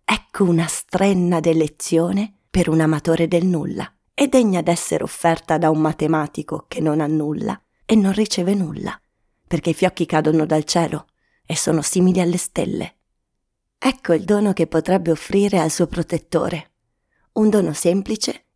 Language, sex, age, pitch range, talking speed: Italian, female, 30-49, 160-190 Hz, 150 wpm